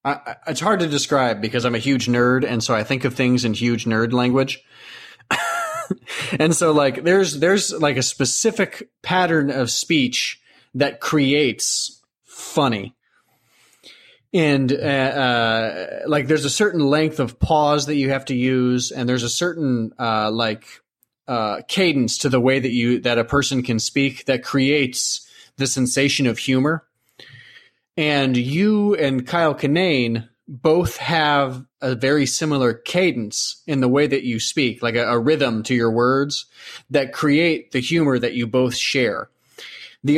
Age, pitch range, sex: 30-49, 120-150 Hz, male